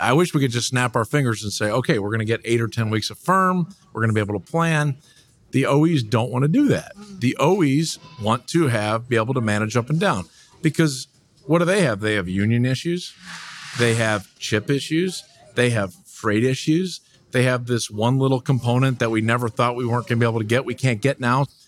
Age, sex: 50-69, male